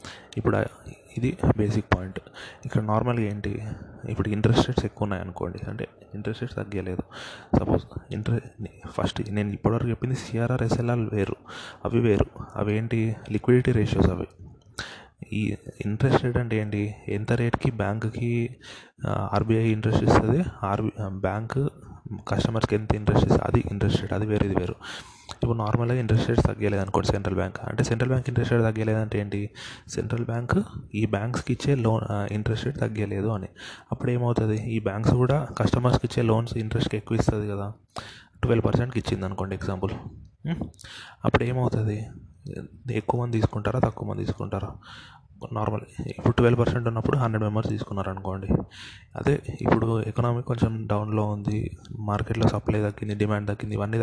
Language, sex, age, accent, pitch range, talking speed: Telugu, male, 20-39, native, 105-120 Hz, 130 wpm